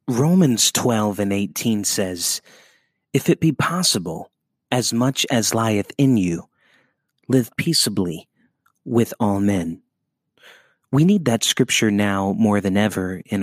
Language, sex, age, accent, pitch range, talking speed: English, male, 30-49, American, 100-125 Hz, 130 wpm